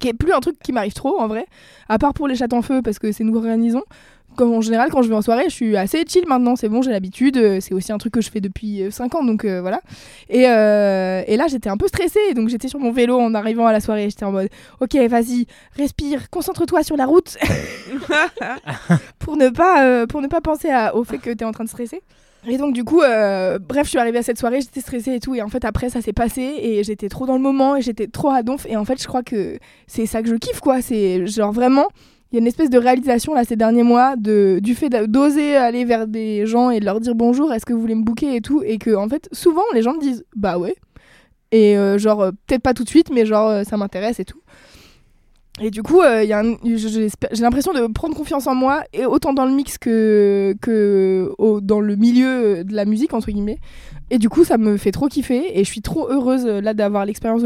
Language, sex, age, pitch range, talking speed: French, female, 20-39, 215-260 Hz, 260 wpm